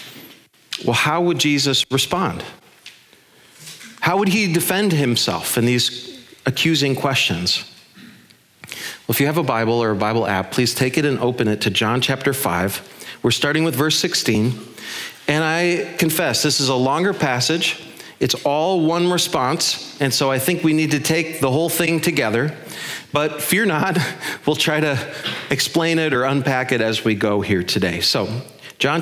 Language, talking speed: English, 170 wpm